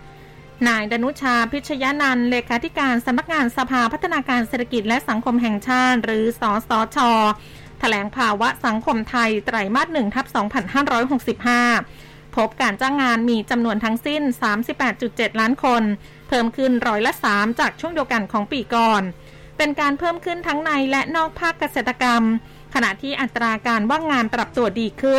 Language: Thai